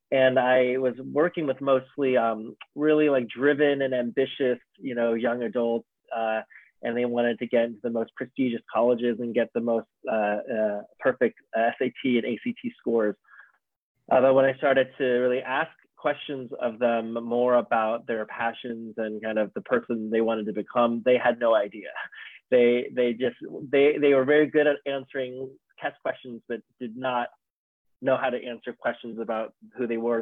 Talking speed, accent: 180 wpm, American